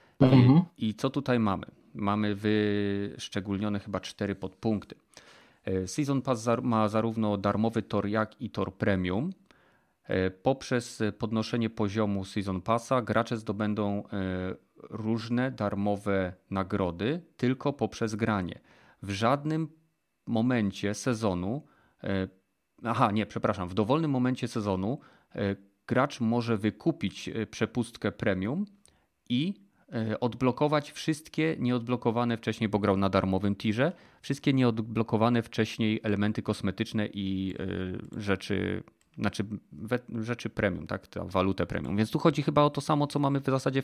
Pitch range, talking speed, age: 100-125 Hz, 115 wpm, 40-59